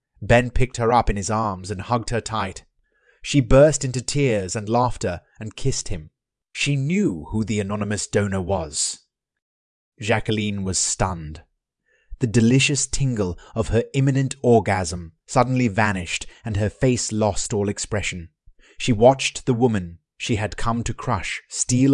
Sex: male